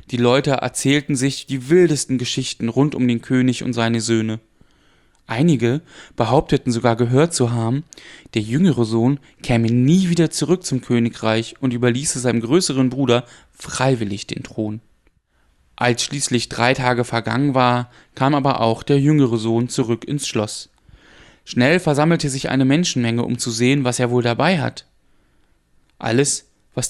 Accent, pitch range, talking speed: German, 115-145 Hz, 150 wpm